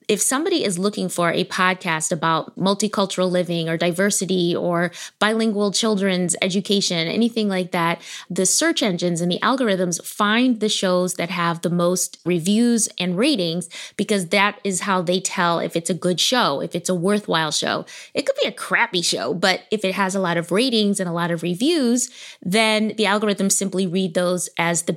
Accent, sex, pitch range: American, female, 175-215 Hz